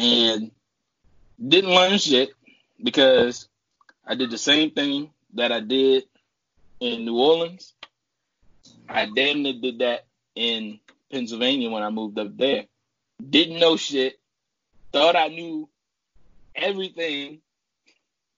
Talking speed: 115 wpm